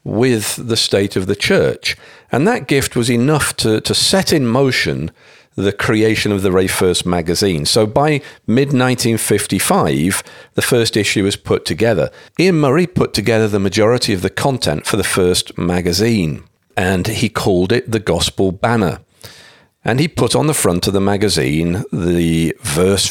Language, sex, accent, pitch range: English, male, British, 90-120 Hz